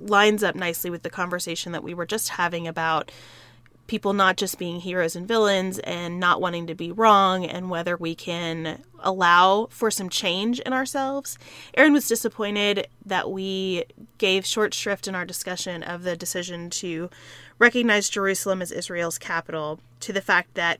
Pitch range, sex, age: 175-220 Hz, female, 20-39